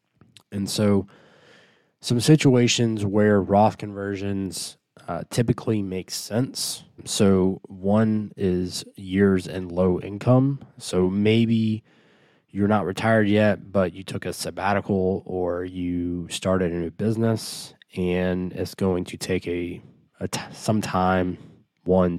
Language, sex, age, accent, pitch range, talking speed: English, male, 20-39, American, 90-100 Hz, 115 wpm